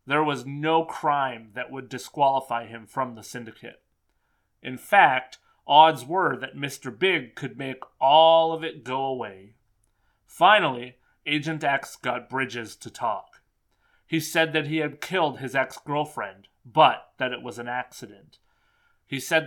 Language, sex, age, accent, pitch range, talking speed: English, male, 30-49, American, 125-160 Hz, 150 wpm